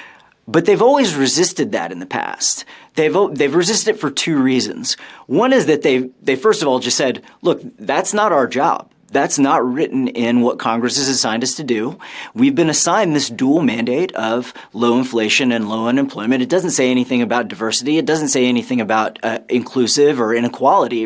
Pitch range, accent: 115-145 Hz, American